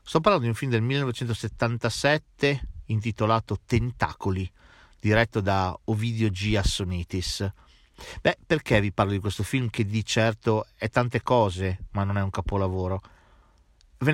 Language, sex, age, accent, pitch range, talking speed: Italian, male, 40-59, native, 100-125 Hz, 140 wpm